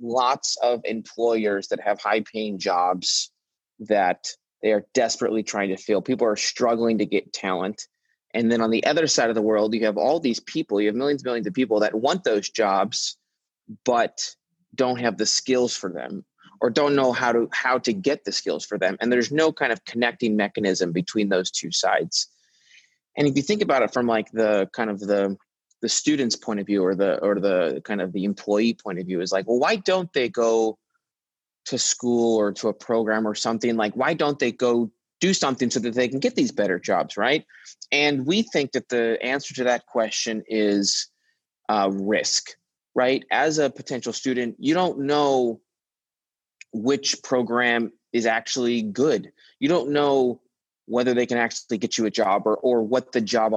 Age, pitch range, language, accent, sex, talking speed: 20-39, 105-125 Hz, English, American, male, 195 wpm